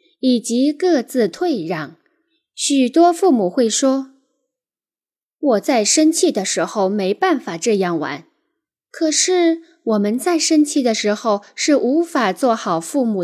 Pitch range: 200-320 Hz